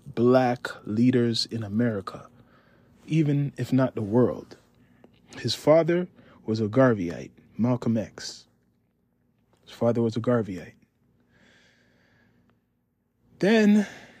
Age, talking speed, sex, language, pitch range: 20-39, 95 wpm, male, English, 115-135 Hz